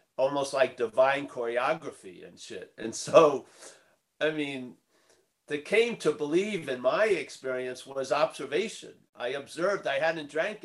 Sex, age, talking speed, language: male, 50-69, 135 wpm, English